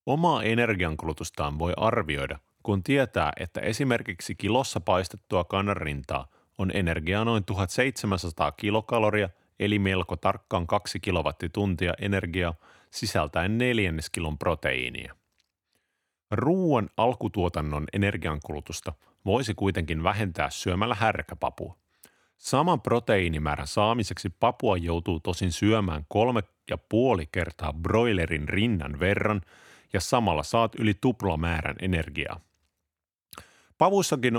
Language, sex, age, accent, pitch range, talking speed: Finnish, male, 30-49, native, 85-115 Hz, 95 wpm